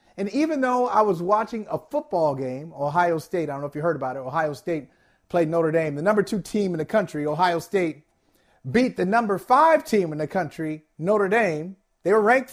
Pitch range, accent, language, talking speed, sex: 160-255 Hz, American, English, 220 wpm, male